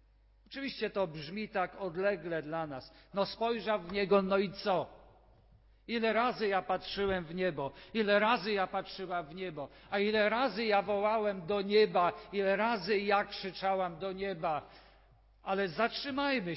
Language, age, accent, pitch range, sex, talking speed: Polish, 50-69, native, 170-210 Hz, male, 150 wpm